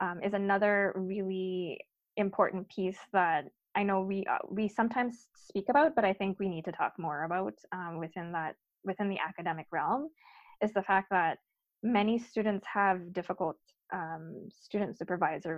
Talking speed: 160 wpm